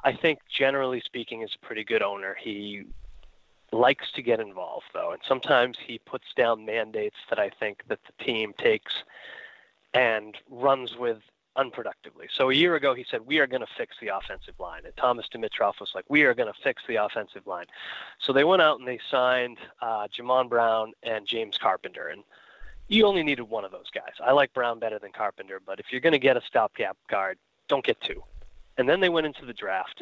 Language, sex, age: English, male, 30-49